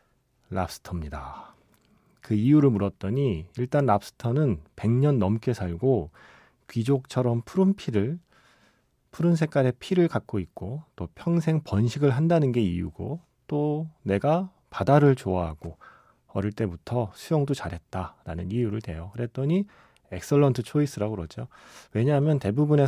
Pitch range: 100-145 Hz